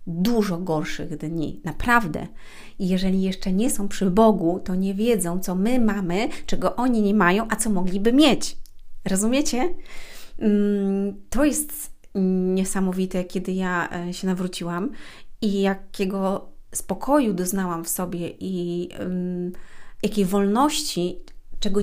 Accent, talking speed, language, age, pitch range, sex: native, 120 wpm, Polish, 30-49, 180-210 Hz, female